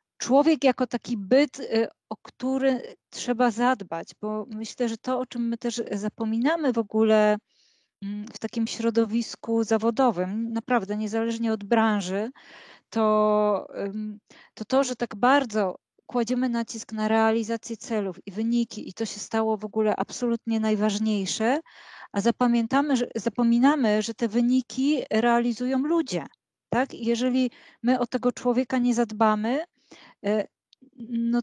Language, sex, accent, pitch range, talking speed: Polish, female, native, 215-250 Hz, 125 wpm